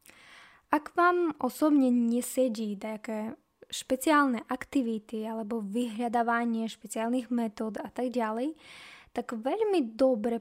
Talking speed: 100 wpm